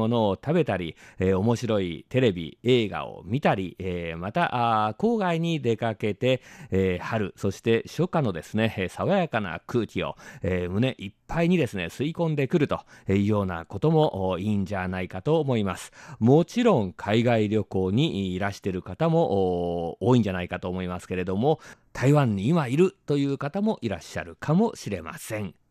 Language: German